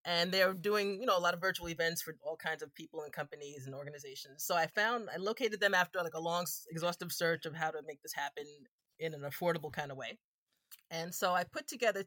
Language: English